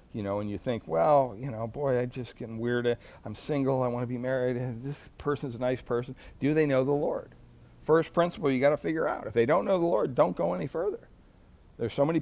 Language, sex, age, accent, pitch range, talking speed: English, male, 60-79, American, 105-135 Hz, 245 wpm